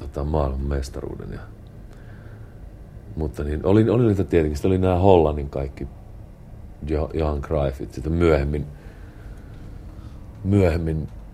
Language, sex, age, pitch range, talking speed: Finnish, male, 40-59, 75-100 Hz, 100 wpm